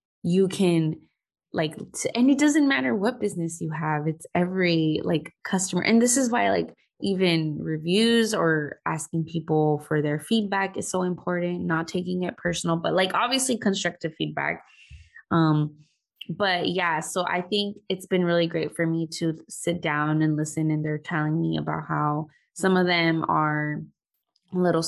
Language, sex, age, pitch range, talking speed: English, female, 20-39, 155-185 Hz, 165 wpm